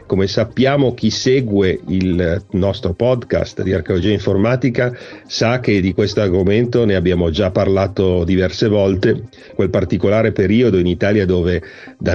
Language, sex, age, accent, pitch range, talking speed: Italian, male, 50-69, native, 90-110 Hz, 140 wpm